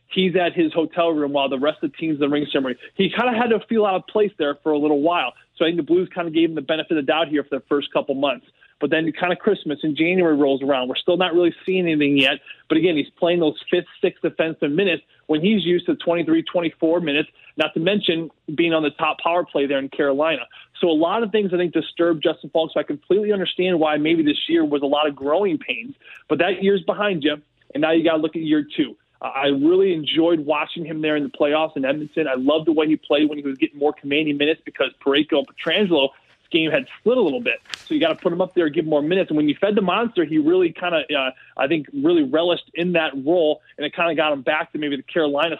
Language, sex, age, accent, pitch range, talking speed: English, male, 20-39, American, 150-180 Hz, 275 wpm